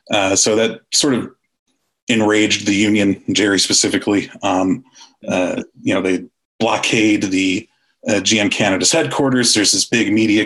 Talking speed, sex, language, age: 145 wpm, male, English, 30-49